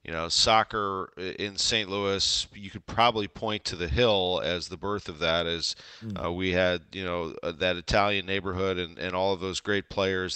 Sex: male